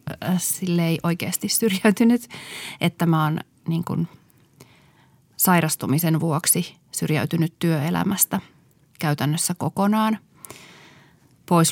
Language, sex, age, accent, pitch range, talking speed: Finnish, female, 30-49, native, 155-185 Hz, 75 wpm